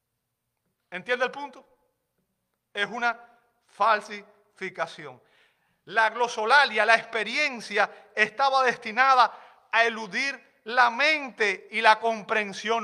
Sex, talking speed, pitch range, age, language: male, 90 wpm, 215-265 Hz, 40-59, Spanish